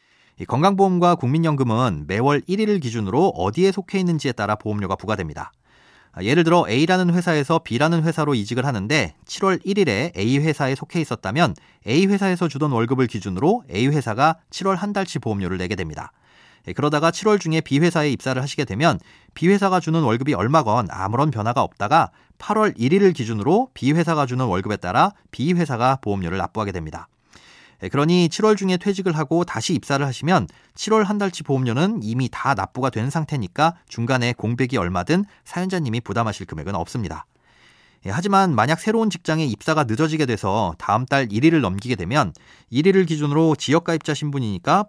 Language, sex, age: Korean, male, 30-49